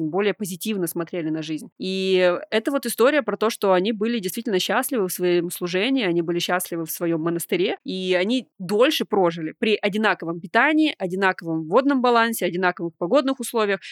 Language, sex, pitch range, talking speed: Russian, female, 185-230 Hz, 165 wpm